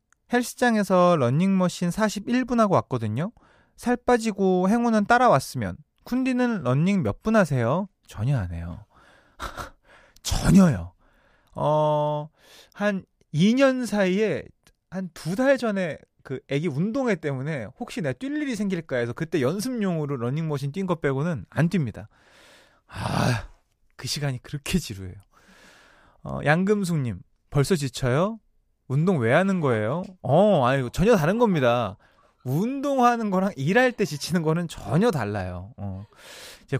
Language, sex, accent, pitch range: Korean, male, native, 130-200 Hz